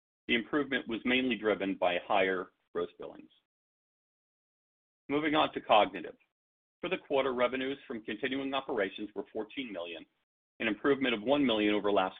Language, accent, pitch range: English, American, 100-130 Hz